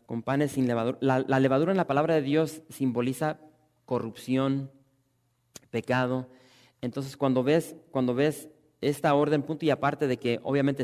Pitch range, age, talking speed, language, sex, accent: 120-140 Hz, 30-49, 155 wpm, English, male, Mexican